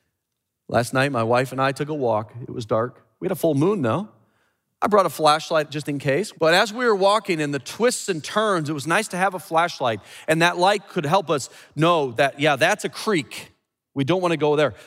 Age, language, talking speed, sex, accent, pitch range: 40-59, English, 240 wpm, male, American, 125-190 Hz